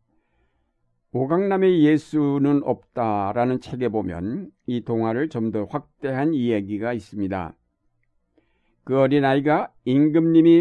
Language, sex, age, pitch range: Korean, male, 60-79, 120-140 Hz